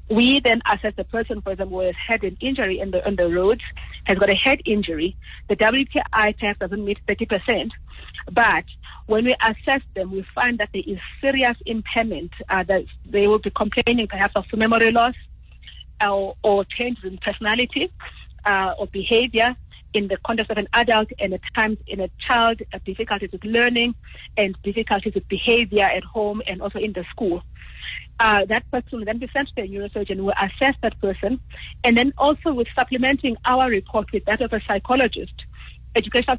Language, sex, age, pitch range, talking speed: English, female, 30-49, 200-235 Hz, 185 wpm